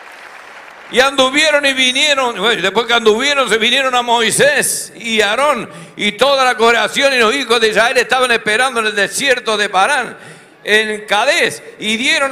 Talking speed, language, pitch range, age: 160 wpm, Spanish, 225-280 Hz, 60-79